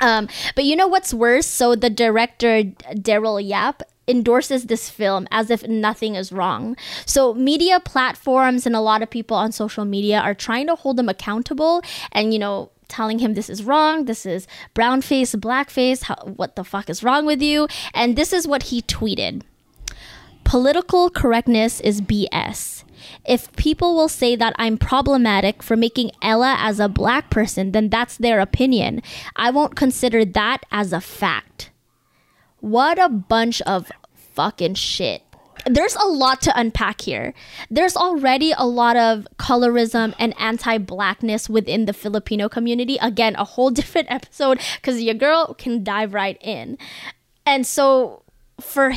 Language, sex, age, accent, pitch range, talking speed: English, female, 10-29, American, 215-265 Hz, 160 wpm